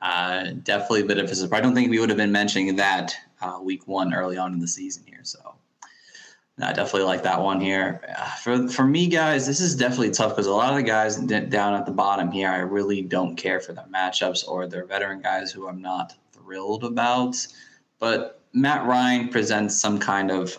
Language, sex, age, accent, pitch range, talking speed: English, male, 20-39, American, 95-110 Hz, 210 wpm